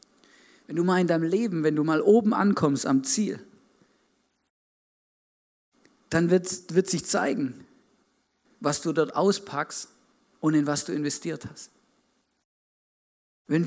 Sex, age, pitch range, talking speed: male, 50-69, 155-195 Hz, 125 wpm